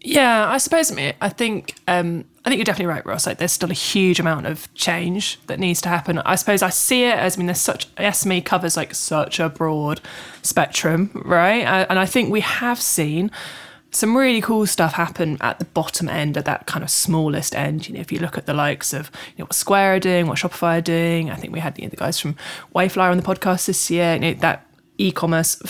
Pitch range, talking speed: 155-190 Hz, 245 wpm